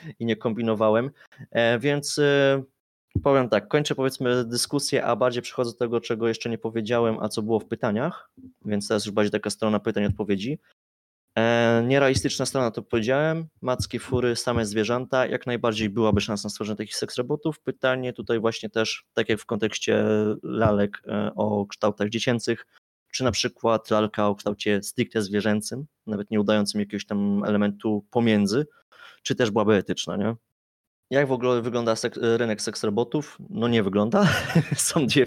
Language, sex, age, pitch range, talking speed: Polish, male, 20-39, 105-125 Hz, 165 wpm